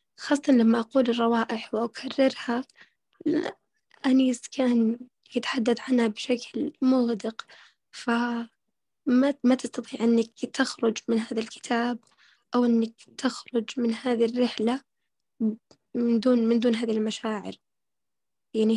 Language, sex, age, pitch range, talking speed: Arabic, female, 10-29, 230-260 Hz, 100 wpm